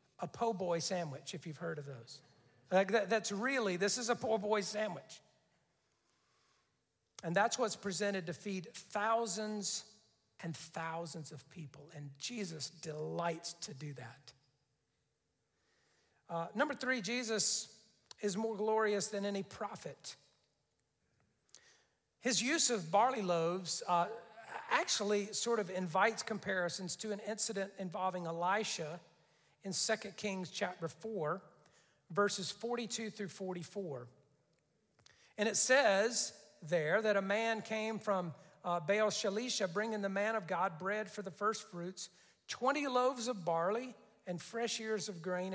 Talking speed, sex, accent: 135 wpm, male, American